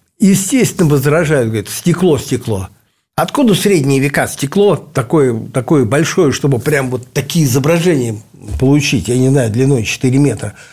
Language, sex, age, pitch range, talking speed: Russian, male, 60-79, 115-155 Hz, 135 wpm